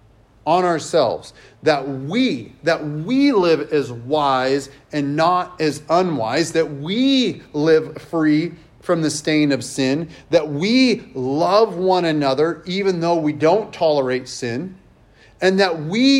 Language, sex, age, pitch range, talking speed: English, male, 30-49, 140-195 Hz, 135 wpm